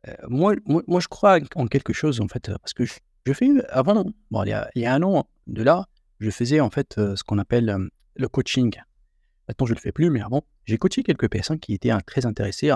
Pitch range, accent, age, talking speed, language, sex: 105-140 Hz, French, 40-59, 270 wpm, French, male